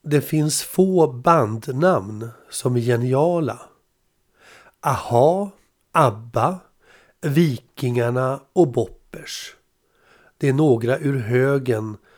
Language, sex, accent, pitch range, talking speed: Swedish, male, native, 120-155 Hz, 85 wpm